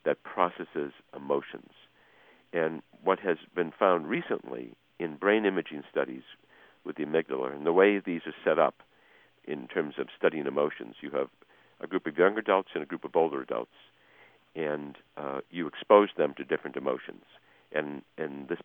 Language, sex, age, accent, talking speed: English, male, 60-79, American, 165 wpm